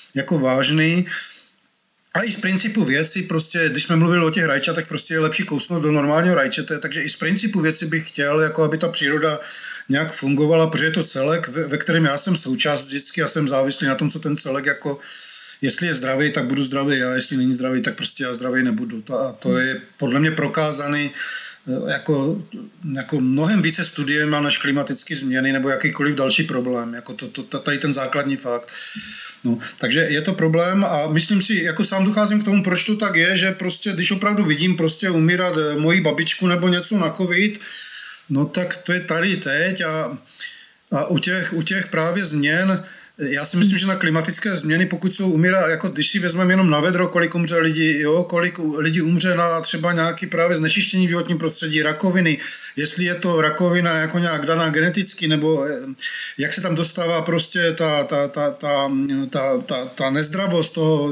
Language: Czech